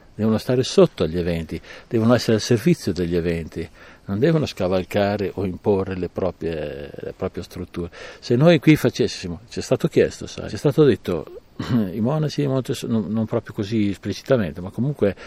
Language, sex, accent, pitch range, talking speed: Italian, male, native, 90-110 Hz, 175 wpm